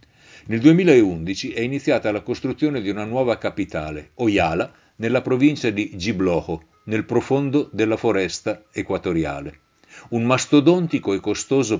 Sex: male